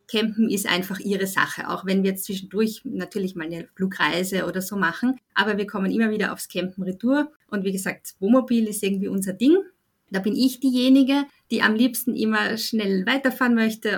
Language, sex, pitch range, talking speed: German, female, 185-240 Hz, 190 wpm